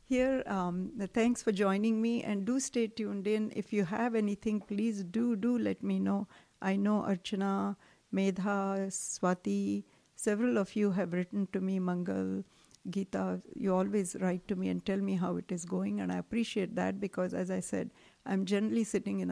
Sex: female